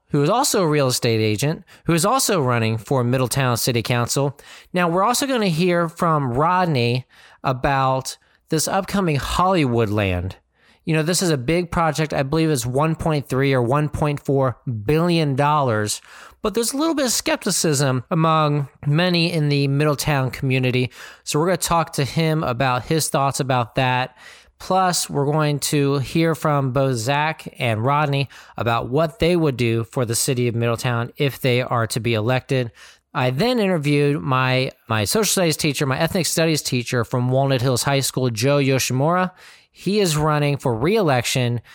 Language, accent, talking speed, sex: English, American, 165 wpm, male